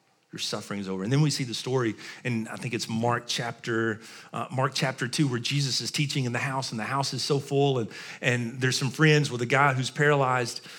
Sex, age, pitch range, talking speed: male, 40-59, 135-170 Hz, 240 wpm